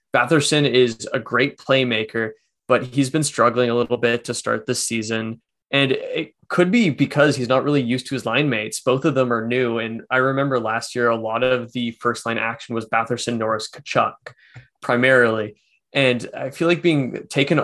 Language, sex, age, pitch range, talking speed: English, male, 20-39, 115-140 Hz, 195 wpm